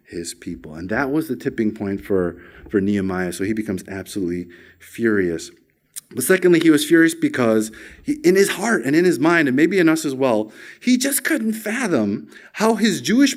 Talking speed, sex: 190 wpm, male